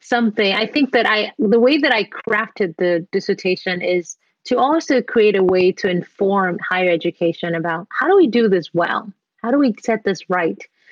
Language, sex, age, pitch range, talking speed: English, female, 30-49, 180-225 Hz, 190 wpm